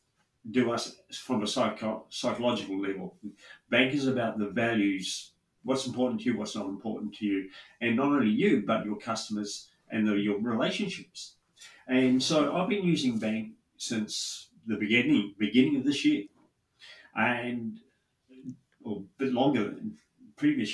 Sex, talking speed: male, 140 wpm